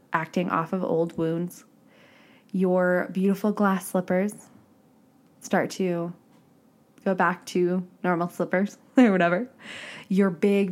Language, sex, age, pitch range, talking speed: English, female, 20-39, 170-205 Hz, 110 wpm